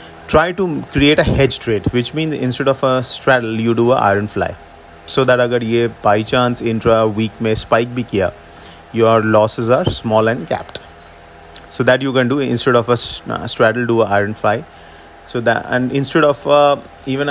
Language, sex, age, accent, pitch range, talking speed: English, male, 30-49, Indian, 110-130 Hz, 185 wpm